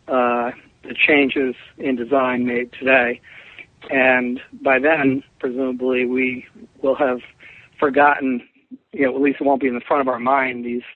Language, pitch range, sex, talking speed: English, 125-140 Hz, male, 160 wpm